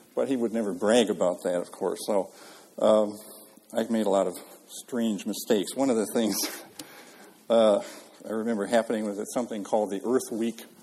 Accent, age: American, 50-69